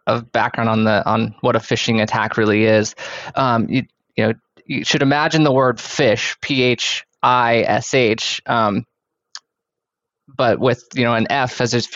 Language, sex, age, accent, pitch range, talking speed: English, male, 20-39, American, 115-130 Hz, 170 wpm